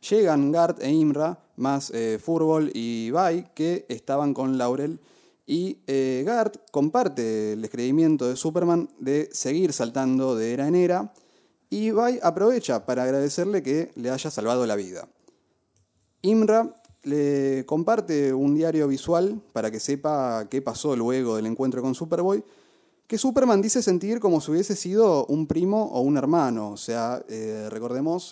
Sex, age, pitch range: male, 30-49, 120-170 Hz